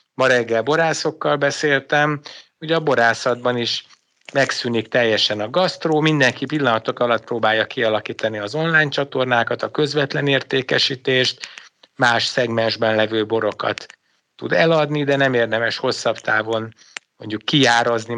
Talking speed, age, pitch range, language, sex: 120 wpm, 60-79, 115-150 Hz, Hungarian, male